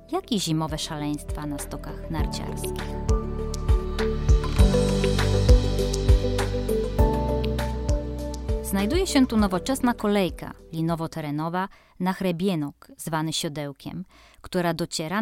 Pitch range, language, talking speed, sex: 145-200 Hz, Polish, 75 wpm, female